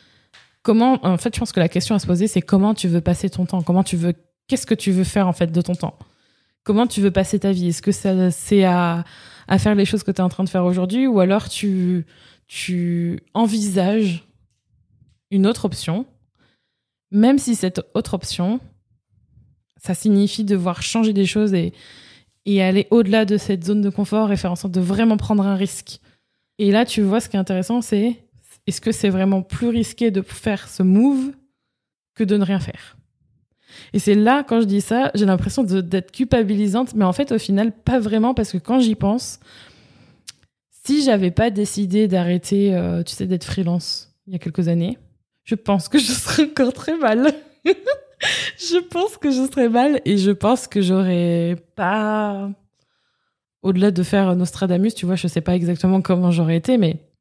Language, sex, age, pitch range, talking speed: French, female, 20-39, 180-225 Hz, 195 wpm